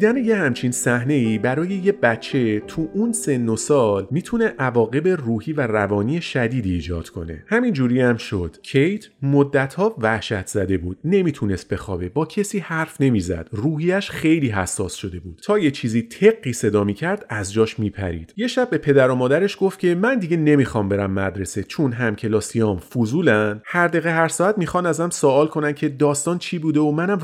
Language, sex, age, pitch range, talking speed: Persian, male, 30-49, 105-160 Hz, 175 wpm